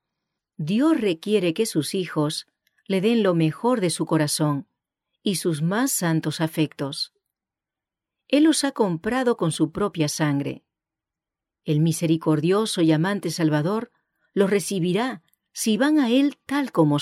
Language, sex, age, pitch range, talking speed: English, female, 40-59, 155-225 Hz, 135 wpm